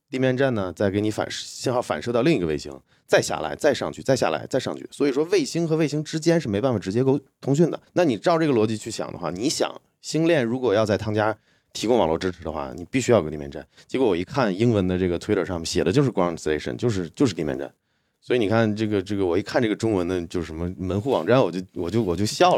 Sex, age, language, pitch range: male, 30-49, Chinese, 95-130 Hz